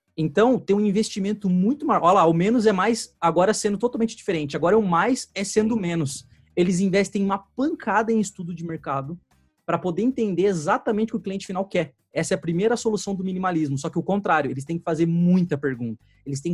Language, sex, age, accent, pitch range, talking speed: Portuguese, male, 20-39, Brazilian, 150-215 Hz, 215 wpm